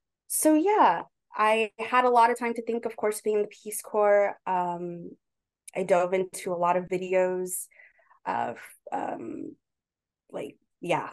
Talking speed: 150 wpm